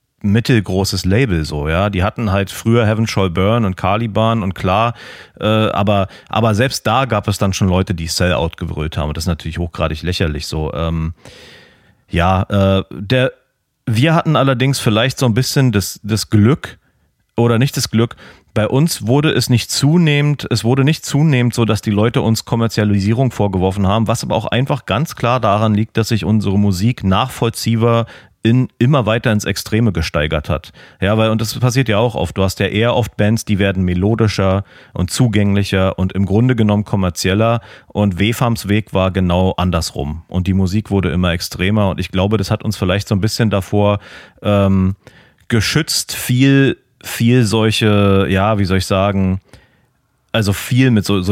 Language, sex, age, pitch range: German, male, 40-59, 95-120 Hz